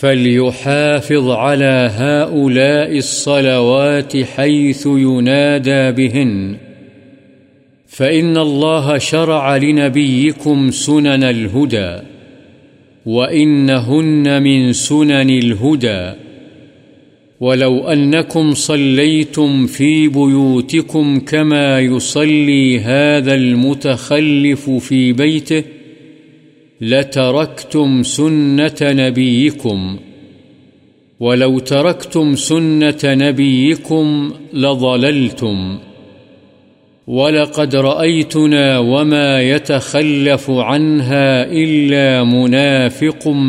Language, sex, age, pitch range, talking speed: Urdu, male, 50-69, 130-150 Hz, 60 wpm